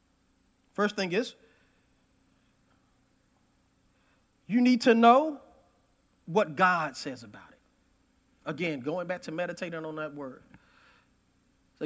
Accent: American